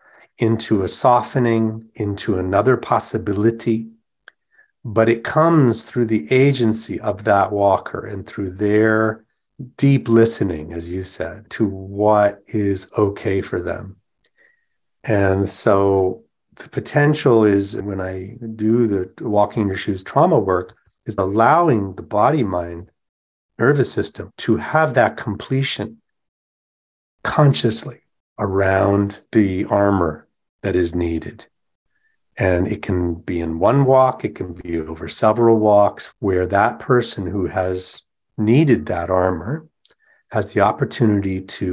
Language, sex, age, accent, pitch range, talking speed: English, male, 40-59, American, 95-115 Hz, 125 wpm